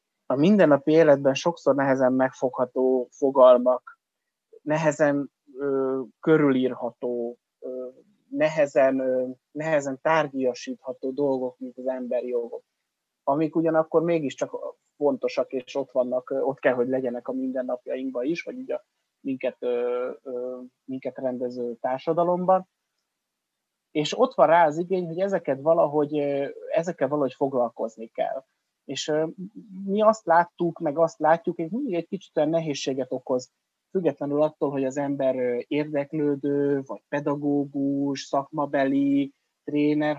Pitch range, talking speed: 130-165 Hz, 120 wpm